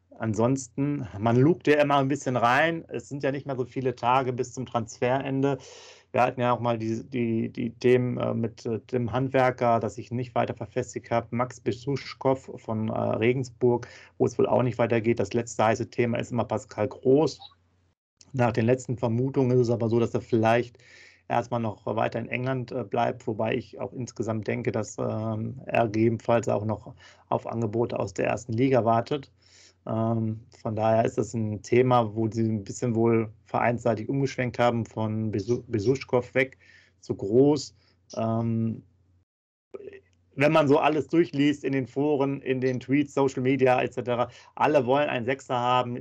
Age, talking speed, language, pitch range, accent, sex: 30-49, 170 wpm, German, 115-130 Hz, German, male